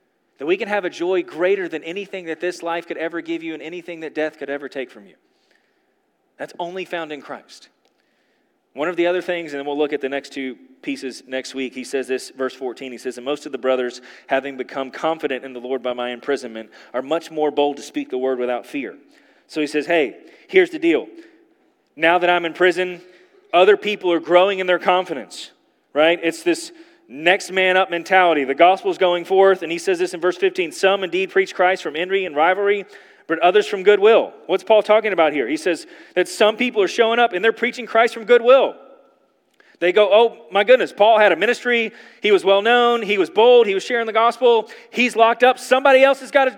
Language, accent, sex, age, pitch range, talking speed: English, American, male, 30-49, 160-255 Hz, 225 wpm